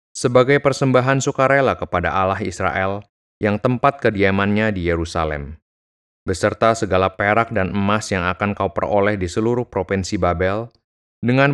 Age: 30-49